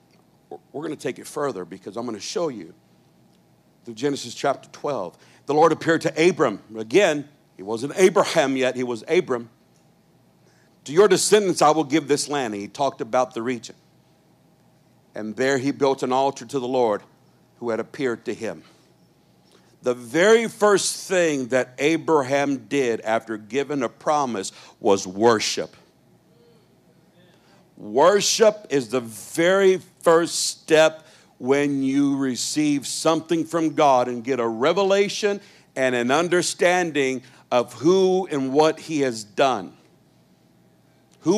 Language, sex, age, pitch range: English, male, 60-79, 130-165 Hz